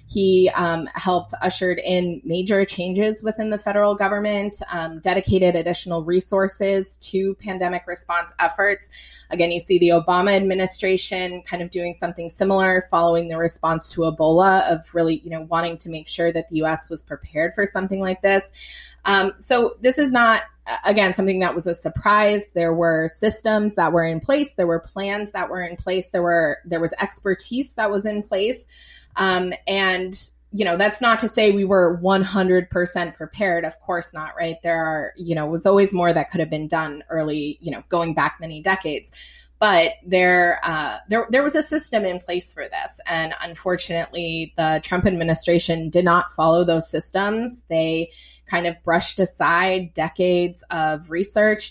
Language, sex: English, female